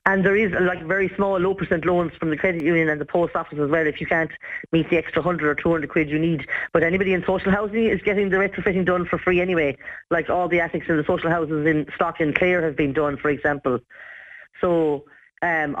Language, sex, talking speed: English, female, 240 wpm